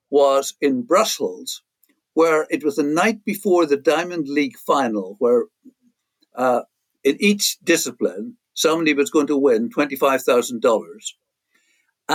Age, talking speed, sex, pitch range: 60-79, 120 wpm, male, 140-215 Hz